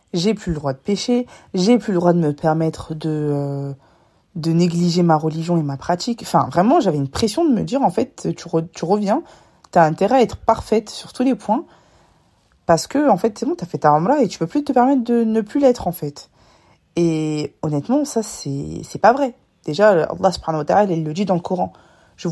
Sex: female